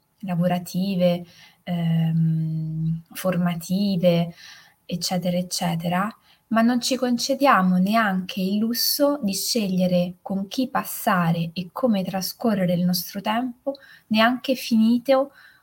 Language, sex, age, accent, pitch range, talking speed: Italian, female, 20-39, native, 180-225 Hz, 95 wpm